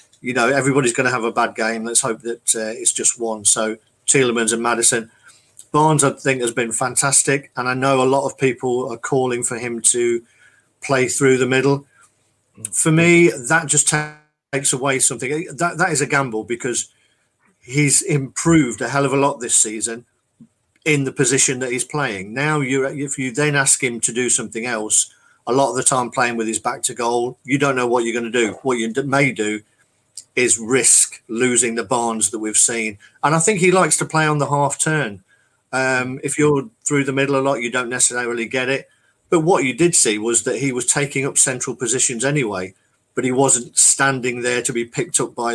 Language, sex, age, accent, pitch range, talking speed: English, male, 40-59, British, 115-140 Hz, 210 wpm